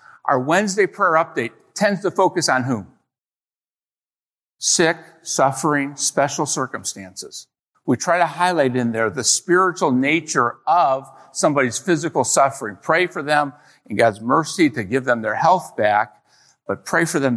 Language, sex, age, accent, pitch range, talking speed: English, male, 50-69, American, 120-180 Hz, 145 wpm